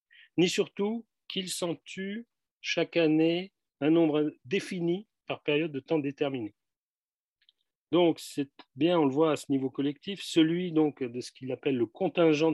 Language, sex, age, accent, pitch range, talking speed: French, male, 40-59, French, 135-165 Hz, 160 wpm